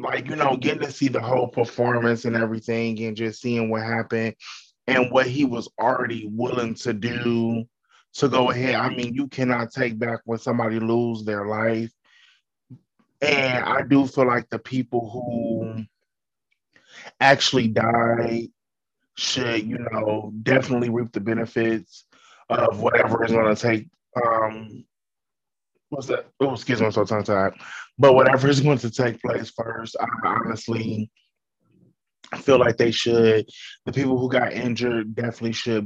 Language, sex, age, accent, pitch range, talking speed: English, male, 20-39, American, 110-125 Hz, 150 wpm